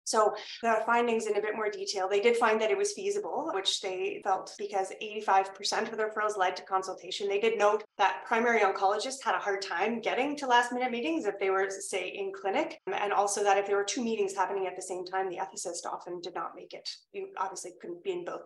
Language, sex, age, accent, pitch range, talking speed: English, female, 30-49, American, 190-240 Hz, 235 wpm